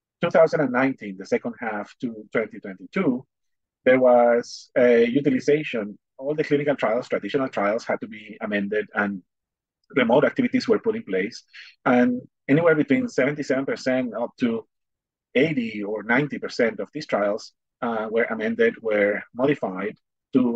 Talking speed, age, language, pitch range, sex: 130 wpm, 30-49, English, 110-150 Hz, male